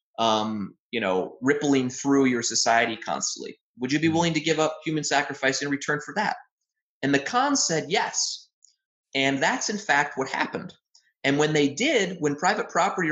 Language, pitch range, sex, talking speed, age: English, 130-155 Hz, male, 180 wpm, 30-49